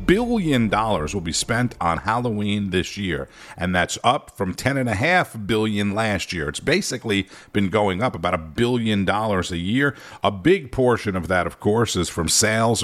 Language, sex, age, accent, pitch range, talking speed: English, male, 50-69, American, 100-140 Hz, 190 wpm